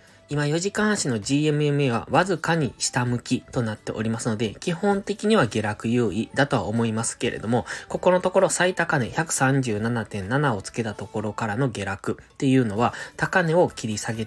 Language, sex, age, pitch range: Japanese, male, 20-39, 110-155 Hz